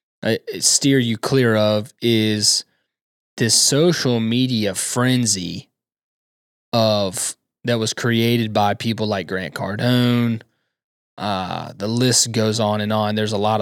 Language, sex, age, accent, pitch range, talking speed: English, male, 20-39, American, 110-130 Hz, 125 wpm